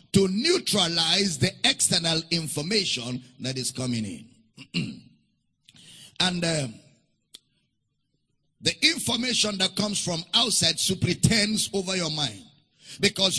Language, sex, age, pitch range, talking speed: English, male, 50-69, 170-225 Hz, 100 wpm